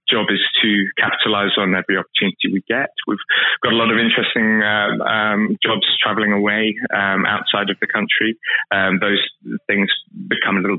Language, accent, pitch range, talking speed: English, British, 90-105 Hz, 170 wpm